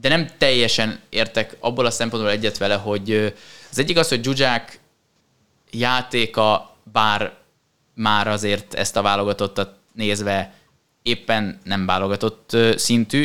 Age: 20-39